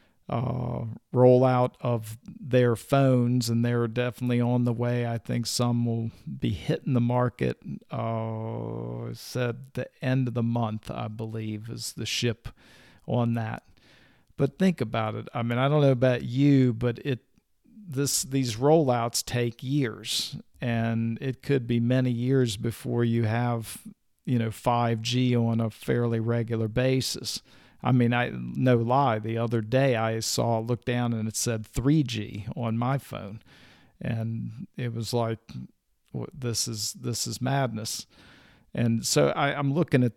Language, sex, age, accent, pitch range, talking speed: English, male, 50-69, American, 115-130 Hz, 155 wpm